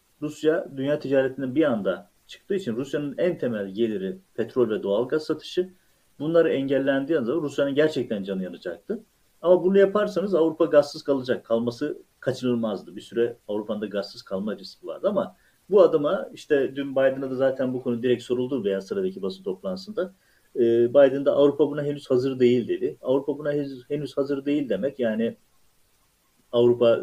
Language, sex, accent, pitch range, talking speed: Turkish, male, native, 125-170 Hz, 160 wpm